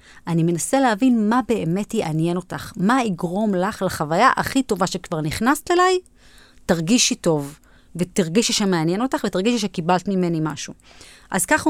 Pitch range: 170-235 Hz